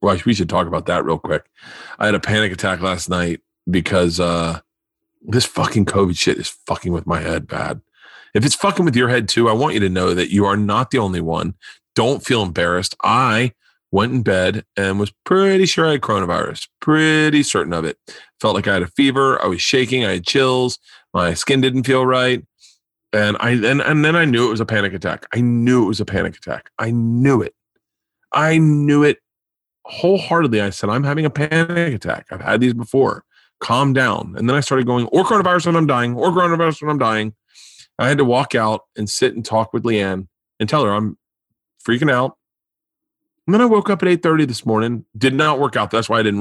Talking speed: 220 wpm